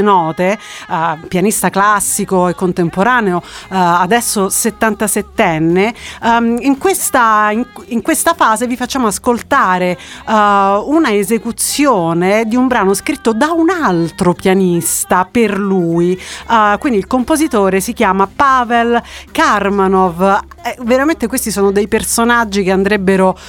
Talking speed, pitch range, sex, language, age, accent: 125 wpm, 185-230 Hz, female, Italian, 40-59, native